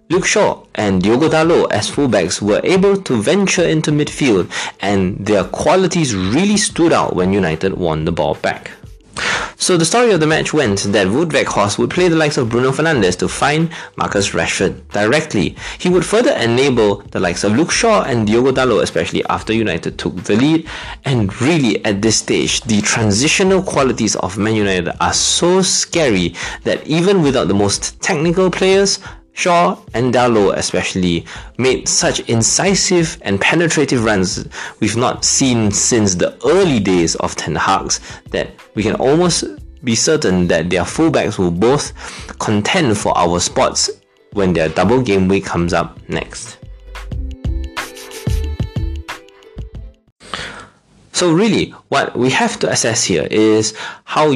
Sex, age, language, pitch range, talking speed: male, 20-39, English, 95-160 Hz, 155 wpm